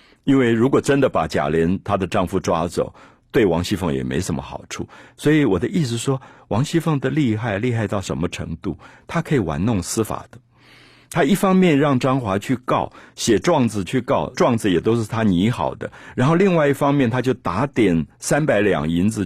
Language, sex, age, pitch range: Chinese, male, 50-69, 90-130 Hz